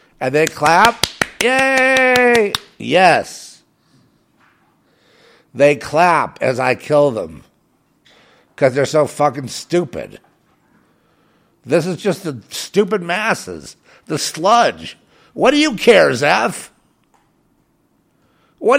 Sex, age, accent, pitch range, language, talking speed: male, 50-69, American, 140-210 Hz, English, 95 wpm